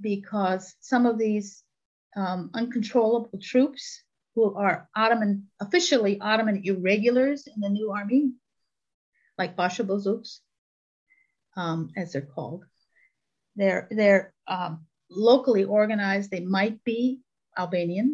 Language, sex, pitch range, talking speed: English, female, 185-240 Hz, 110 wpm